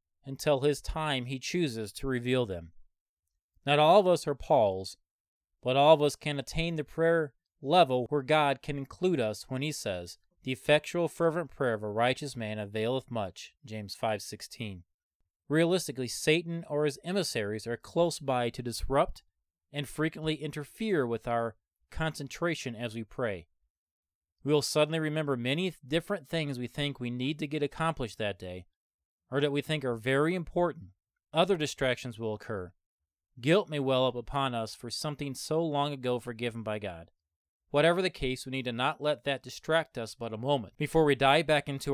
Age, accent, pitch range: 30-49, American, 110-150 Hz